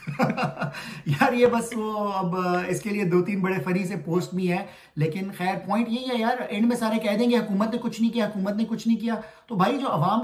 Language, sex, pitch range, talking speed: Urdu, male, 170-220 Hz, 245 wpm